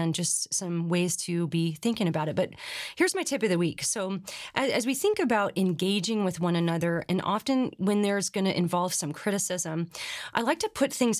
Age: 30-49